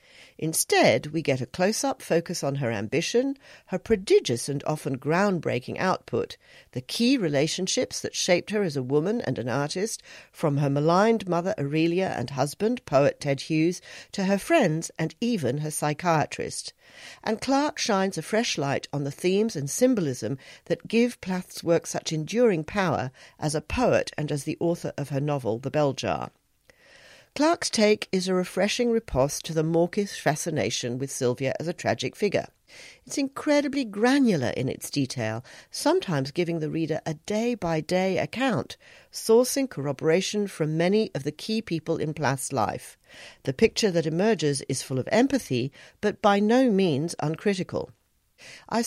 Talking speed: 160 wpm